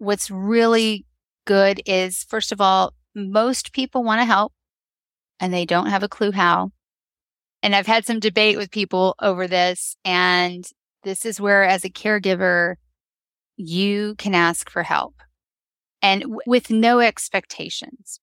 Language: English